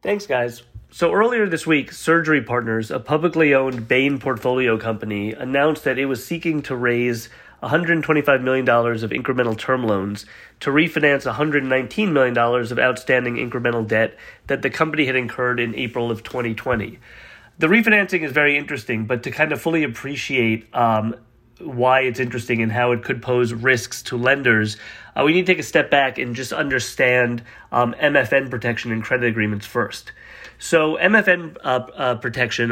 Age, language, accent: 30-49, English, American